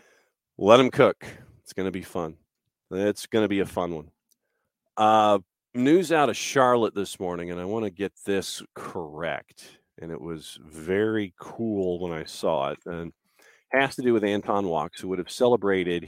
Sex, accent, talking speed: male, American, 185 wpm